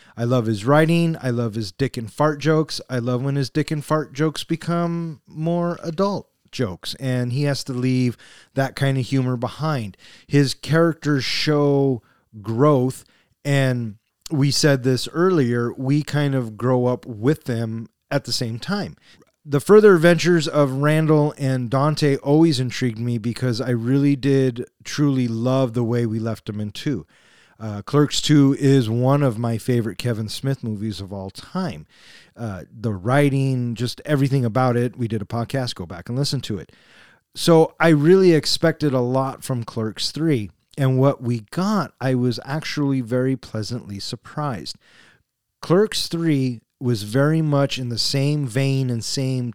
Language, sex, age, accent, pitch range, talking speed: English, male, 30-49, American, 120-150 Hz, 165 wpm